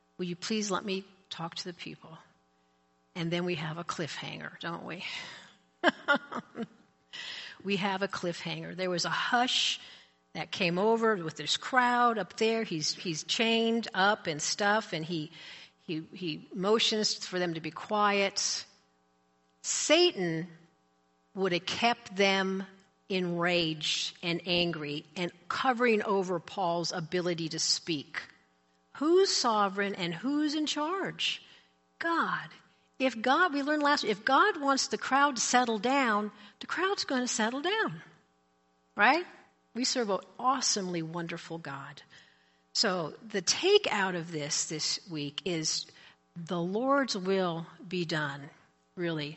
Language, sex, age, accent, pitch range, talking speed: English, female, 50-69, American, 165-230 Hz, 135 wpm